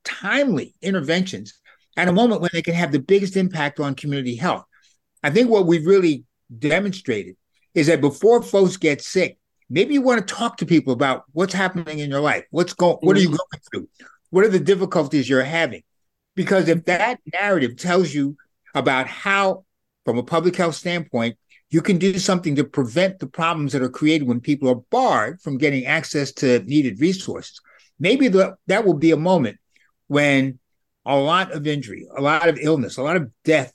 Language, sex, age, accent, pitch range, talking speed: English, male, 60-79, American, 140-185 Hz, 190 wpm